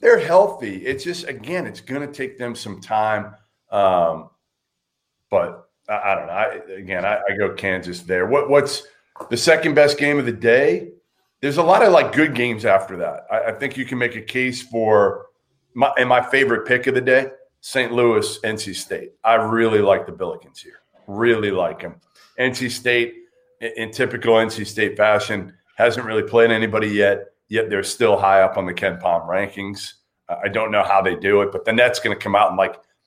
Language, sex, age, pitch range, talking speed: English, male, 40-59, 105-140 Hz, 195 wpm